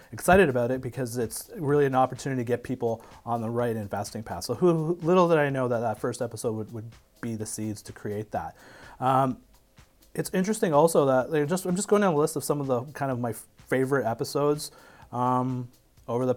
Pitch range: 120-145 Hz